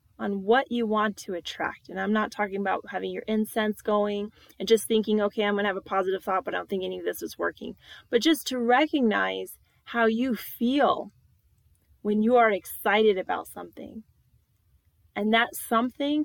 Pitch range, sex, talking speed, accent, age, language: 190-235 Hz, female, 190 wpm, American, 20-39, English